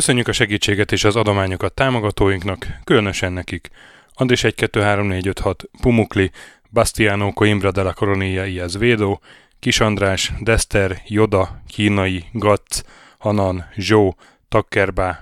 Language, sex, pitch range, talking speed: Hungarian, male, 95-110 Hz, 125 wpm